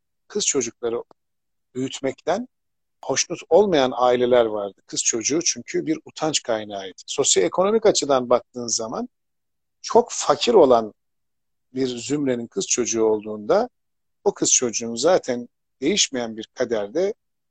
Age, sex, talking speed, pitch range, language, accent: 50-69, male, 110 wpm, 120-175 Hz, Turkish, native